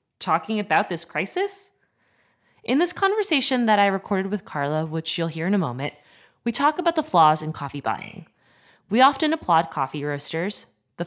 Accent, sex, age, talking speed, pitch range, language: American, female, 20-39, 175 wpm, 160-260 Hz, English